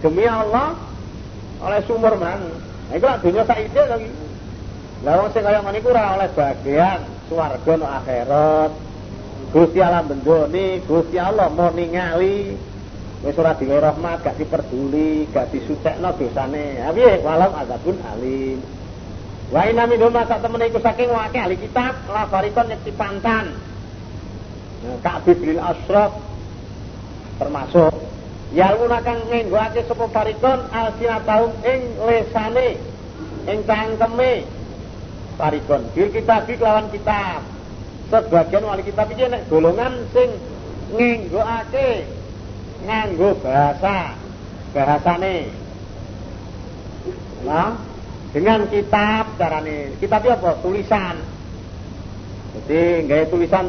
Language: Indonesian